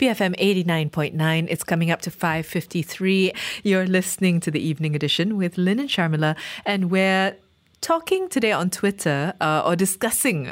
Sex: female